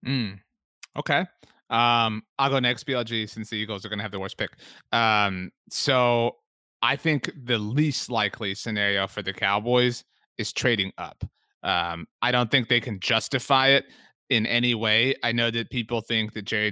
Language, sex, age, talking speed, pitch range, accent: English, male, 30-49, 175 wpm, 105-135 Hz, American